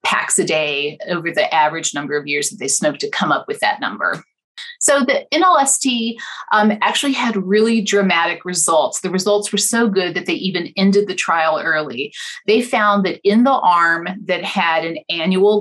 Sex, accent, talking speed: female, American, 190 wpm